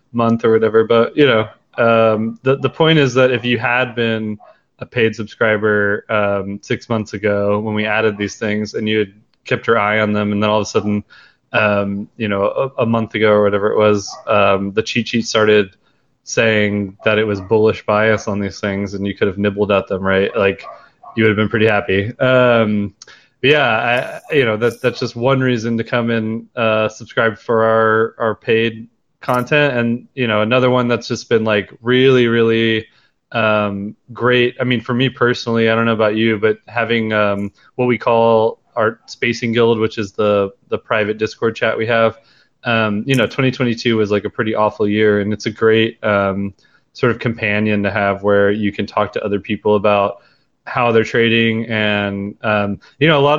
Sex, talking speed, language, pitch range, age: male, 205 wpm, English, 105-120 Hz, 20-39